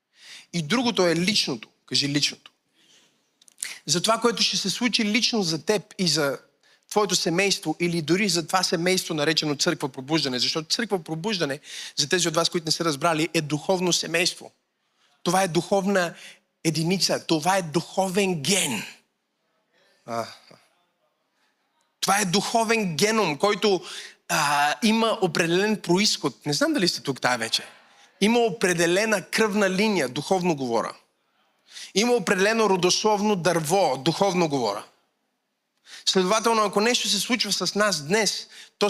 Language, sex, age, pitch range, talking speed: Bulgarian, male, 30-49, 165-205 Hz, 135 wpm